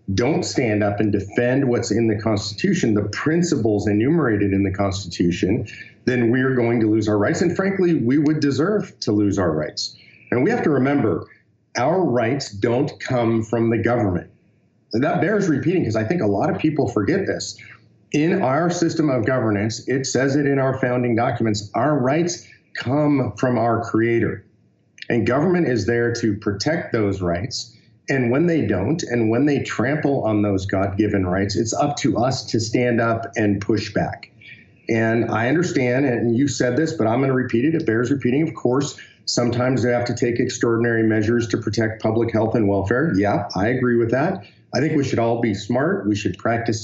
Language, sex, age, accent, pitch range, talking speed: English, male, 40-59, American, 105-135 Hz, 190 wpm